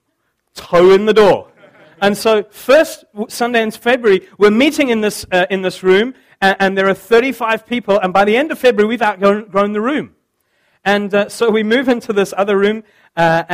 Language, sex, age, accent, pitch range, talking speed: English, male, 40-59, British, 180-220 Hz, 200 wpm